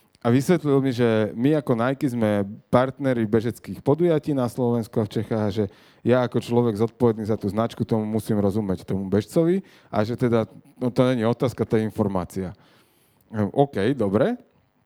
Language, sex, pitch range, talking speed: Slovak, male, 105-125 Hz, 170 wpm